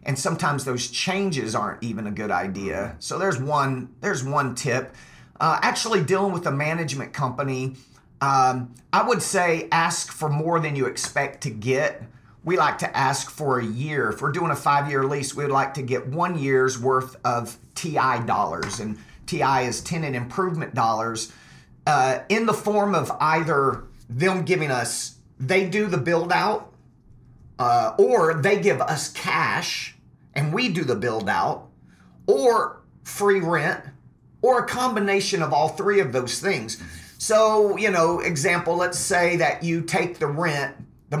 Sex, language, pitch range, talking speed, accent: male, English, 130-180 Hz, 165 wpm, American